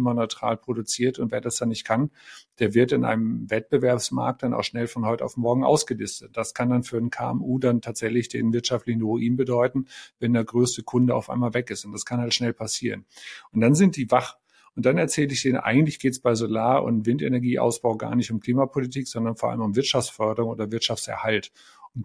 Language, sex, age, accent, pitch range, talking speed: German, male, 50-69, German, 115-130 Hz, 205 wpm